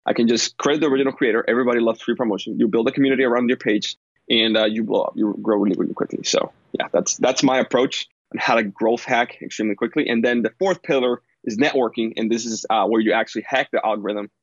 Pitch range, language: 115-135 Hz, English